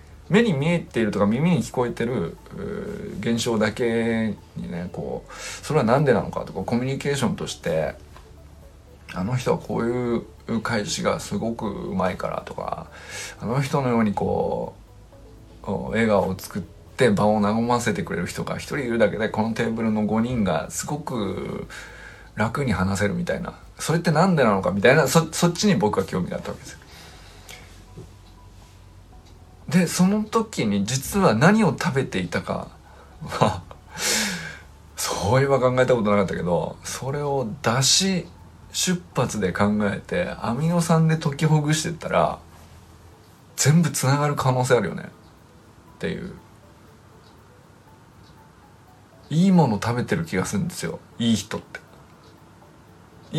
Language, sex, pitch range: Japanese, male, 100-160 Hz